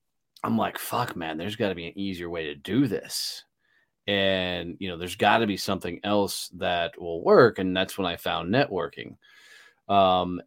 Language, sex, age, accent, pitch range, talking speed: English, male, 30-49, American, 95-130 Hz, 190 wpm